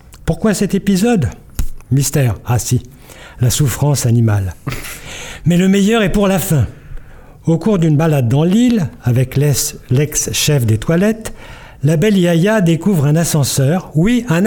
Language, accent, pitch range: French, French, 130-180 Hz